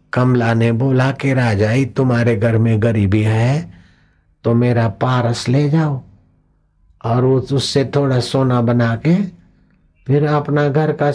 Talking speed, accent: 140 wpm, native